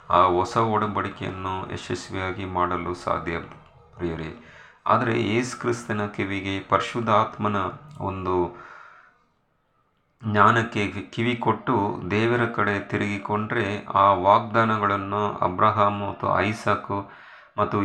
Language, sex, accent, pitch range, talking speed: Kannada, male, native, 95-115 Hz, 75 wpm